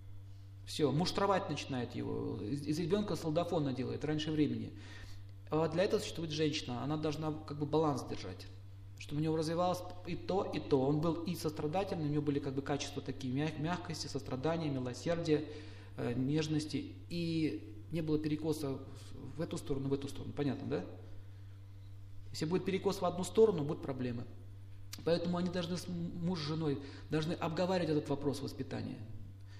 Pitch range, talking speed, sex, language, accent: 100-160 Hz, 155 wpm, male, Russian, native